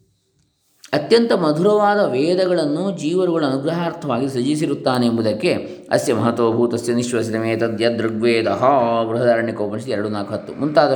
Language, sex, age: Kannada, male, 20-39